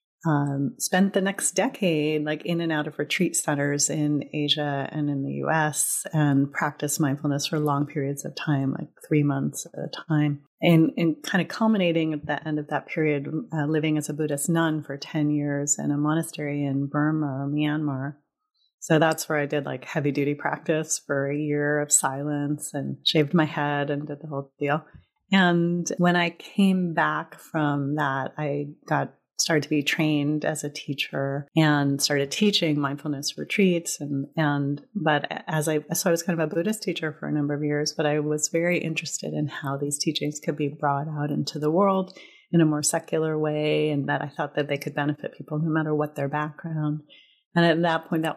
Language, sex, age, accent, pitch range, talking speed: English, female, 30-49, American, 145-165 Hz, 195 wpm